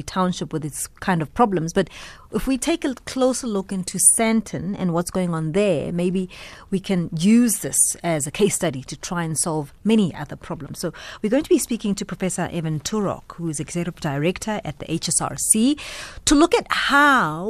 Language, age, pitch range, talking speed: English, 30-49, 170-225 Hz, 195 wpm